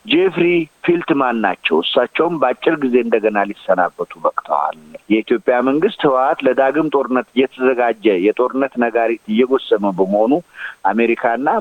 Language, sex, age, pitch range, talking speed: Amharic, male, 50-69, 115-145 Hz, 105 wpm